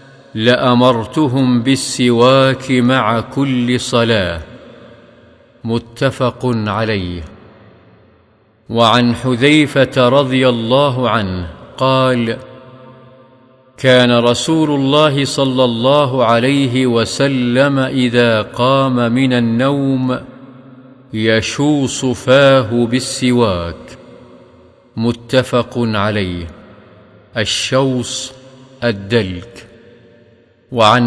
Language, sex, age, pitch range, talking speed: Arabic, male, 50-69, 115-130 Hz, 60 wpm